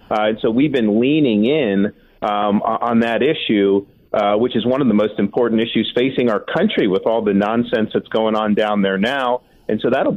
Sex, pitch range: male, 105-125 Hz